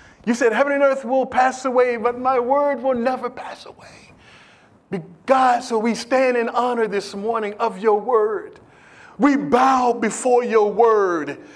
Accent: American